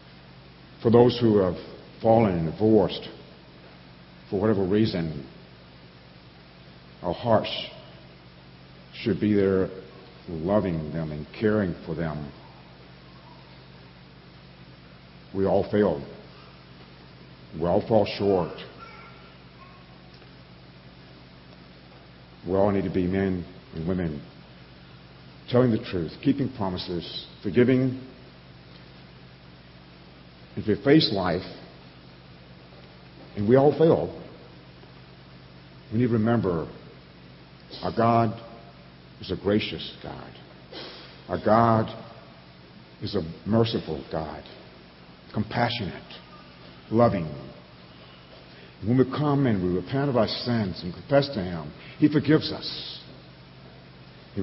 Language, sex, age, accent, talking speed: English, male, 60-79, American, 95 wpm